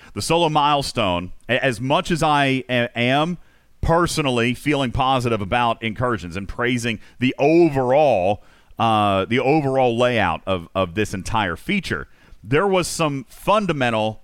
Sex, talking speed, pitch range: male, 125 wpm, 105-145 Hz